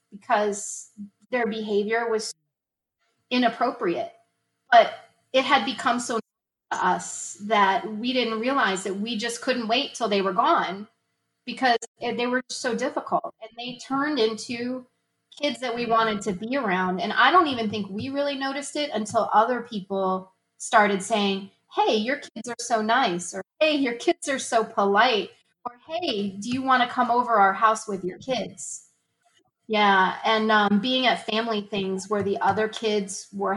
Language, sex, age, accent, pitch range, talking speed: English, female, 30-49, American, 200-250 Hz, 165 wpm